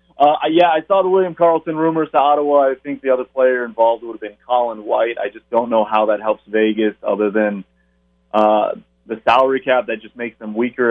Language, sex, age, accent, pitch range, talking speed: English, male, 30-49, American, 115-135 Hz, 220 wpm